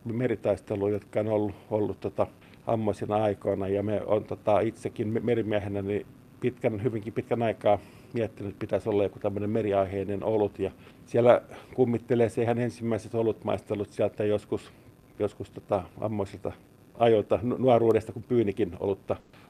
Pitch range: 105-125 Hz